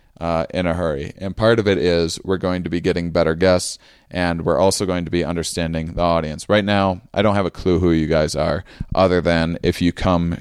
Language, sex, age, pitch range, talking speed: English, male, 30-49, 85-100 Hz, 235 wpm